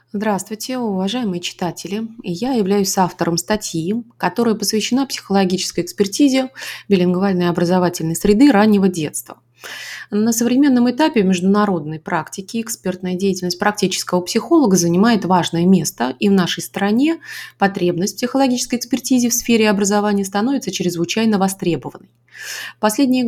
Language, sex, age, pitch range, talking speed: Russian, female, 20-39, 180-235 Hz, 110 wpm